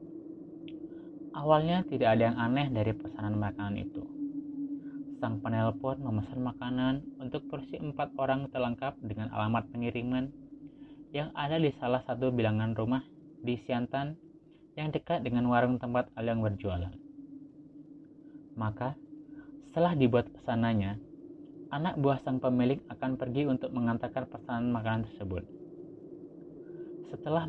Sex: male